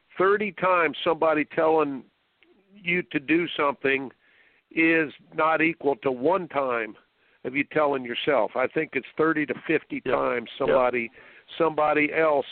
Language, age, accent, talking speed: English, 50-69, American, 135 wpm